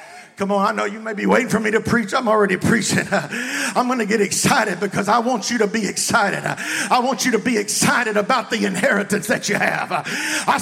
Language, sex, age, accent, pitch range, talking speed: English, male, 50-69, American, 220-320 Hz, 225 wpm